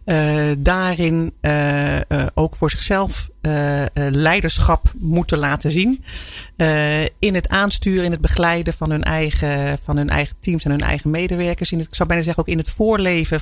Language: Dutch